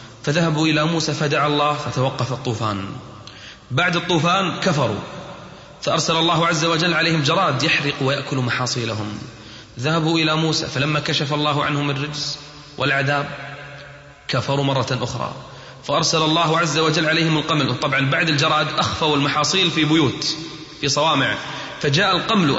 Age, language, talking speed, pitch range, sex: 30-49, Arabic, 130 wpm, 130-165 Hz, male